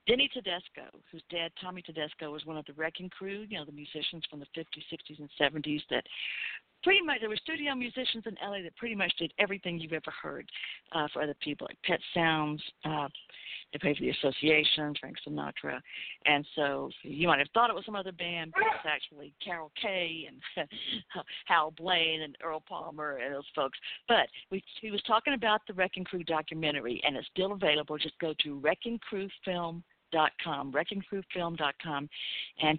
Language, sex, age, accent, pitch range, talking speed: English, female, 60-79, American, 155-215 Hz, 185 wpm